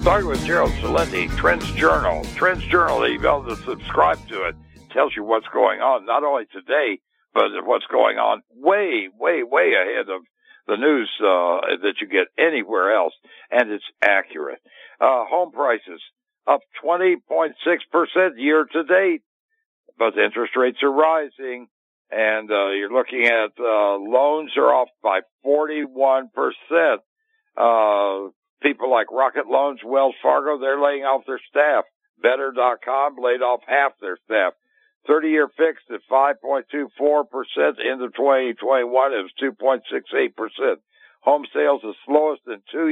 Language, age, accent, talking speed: English, 60-79, American, 140 wpm